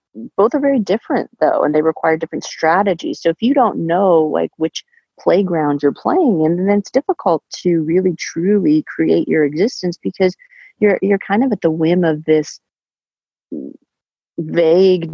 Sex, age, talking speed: female, 30-49, 165 wpm